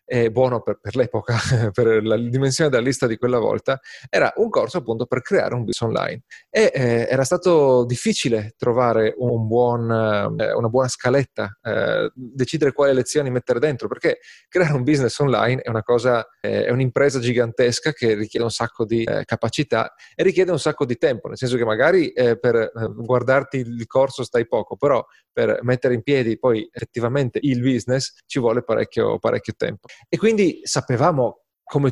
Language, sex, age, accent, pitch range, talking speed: Italian, male, 30-49, native, 115-140 Hz, 175 wpm